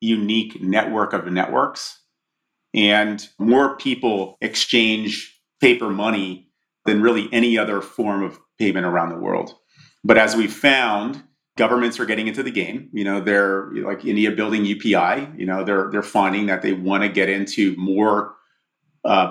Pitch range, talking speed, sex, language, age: 95-110 Hz, 155 wpm, male, English, 40-59